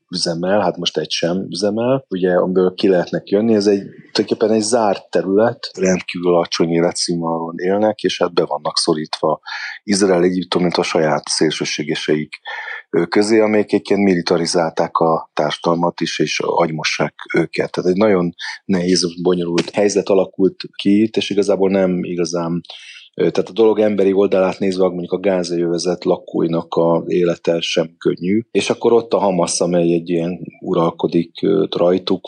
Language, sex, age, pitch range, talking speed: Hungarian, male, 30-49, 85-95 Hz, 145 wpm